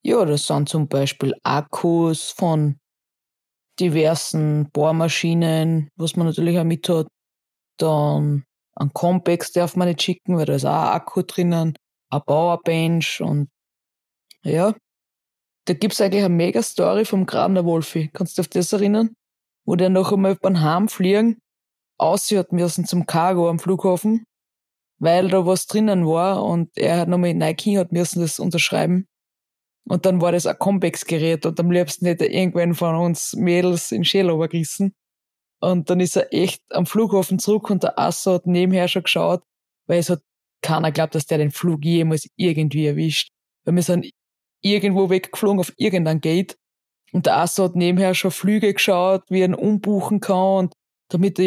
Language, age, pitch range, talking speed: German, 20-39, 165-195 Hz, 170 wpm